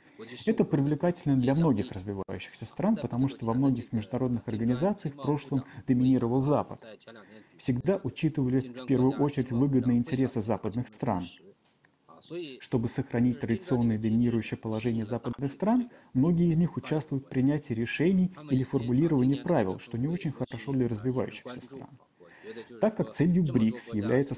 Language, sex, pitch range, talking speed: Russian, male, 115-145 Hz, 135 wpm